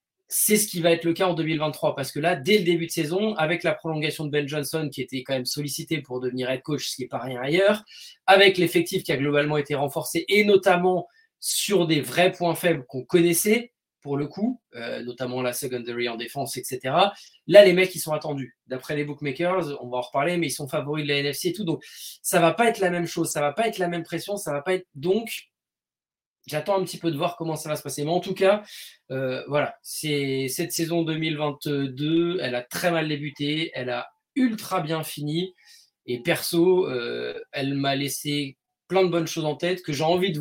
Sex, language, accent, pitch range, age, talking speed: male, French, French, 145-180 Hz, 20-39, 225 wpm